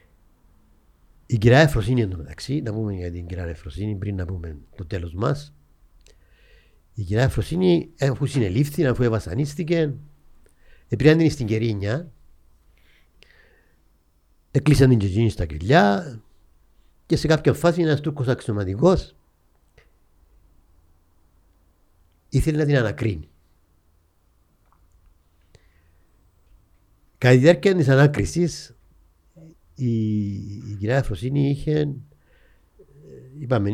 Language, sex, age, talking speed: Greek, male, 50-69, 100 wpm